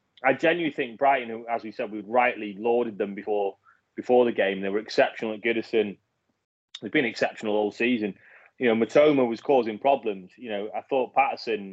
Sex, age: male, 30-49